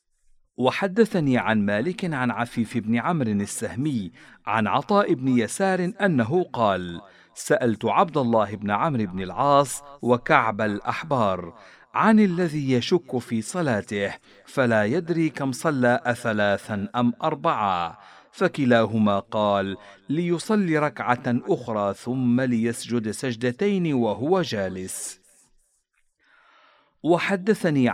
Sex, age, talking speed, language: male, 50-69, 100 wpm, Arabic